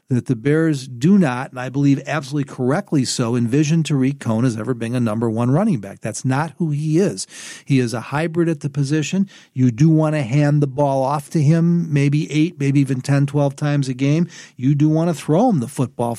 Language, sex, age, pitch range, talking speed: English, male, 50-69, 125-155 Hz, 225 wpm